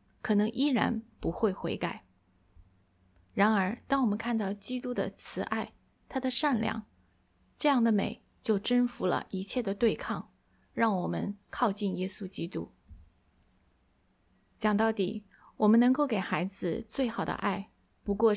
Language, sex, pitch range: Chinese, female, 190-235 Hz